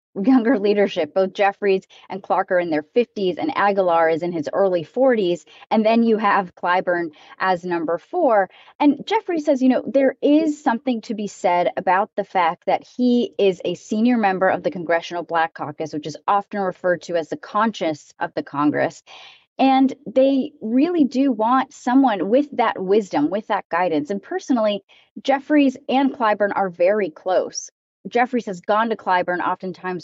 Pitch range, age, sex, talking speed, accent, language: 175-245 Hz, 30-49, female, 175 wpm, American, English